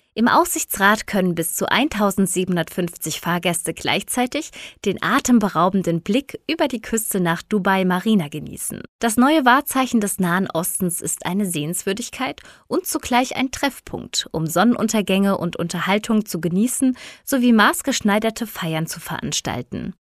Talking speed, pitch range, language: 125 wpm, 175-250 Hz, German